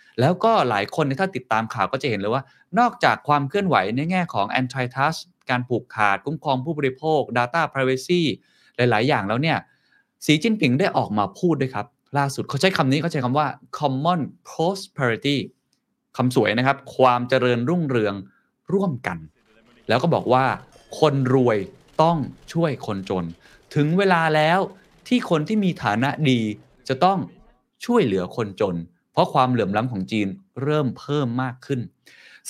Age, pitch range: 20-39, 120-165 Hz